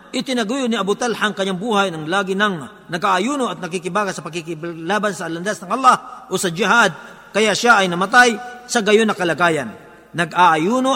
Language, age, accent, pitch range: Filipino, 50-69, native, 185-230 Hz